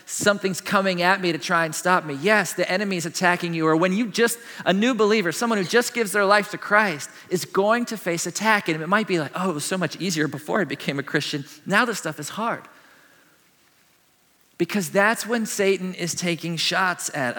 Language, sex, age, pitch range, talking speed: English, male, 40-59, 145-190 Hz, 215 wpm